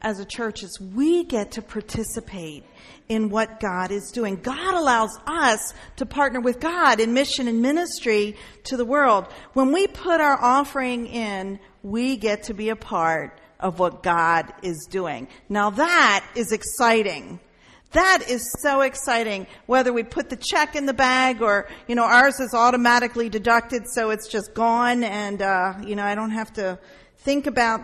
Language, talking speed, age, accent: English, 175 wpm, 50-69, American